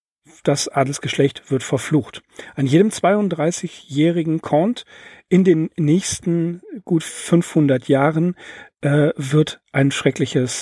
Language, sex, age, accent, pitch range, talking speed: German, male, 40-59, German, 135-175 Hz, 100 wpm